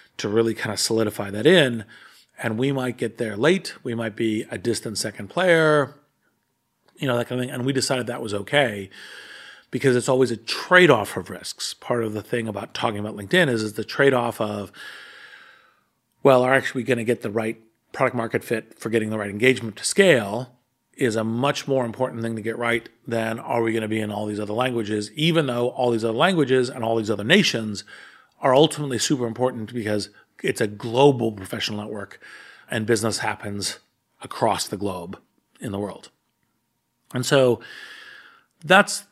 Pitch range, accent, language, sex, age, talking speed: 110-130 Hz, American, English, male, 40-59, 190 wpm